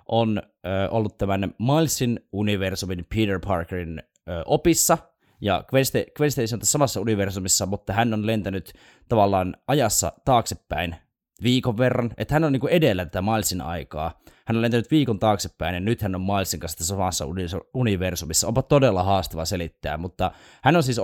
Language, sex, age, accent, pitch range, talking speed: Finnish, male, 20-39, native, 90-120 Hz, 160 wpm